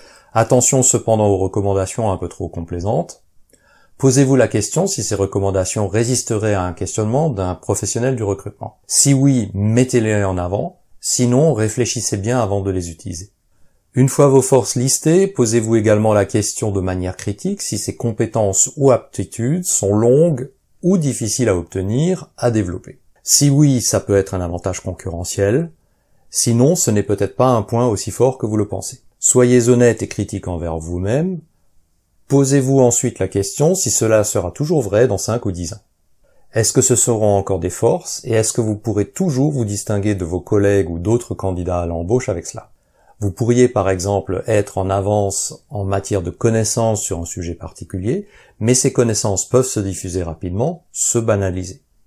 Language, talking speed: French, 170 wpm